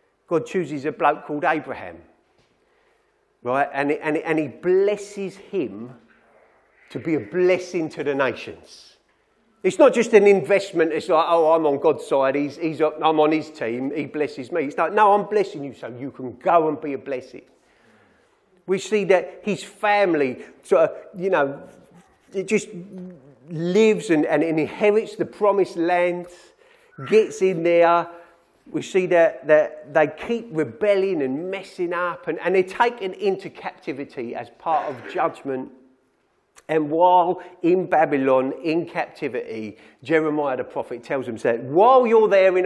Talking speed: 165 wpm